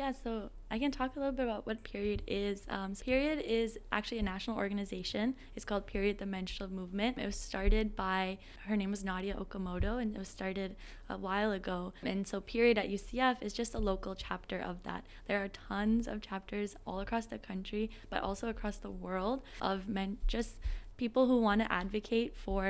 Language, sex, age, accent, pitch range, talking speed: English, female, 10-29, American, 195-225 Hz, 205 wpm